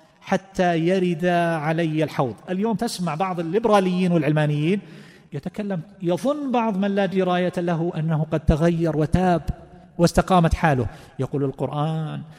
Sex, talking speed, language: male, 115 wpm, Arabic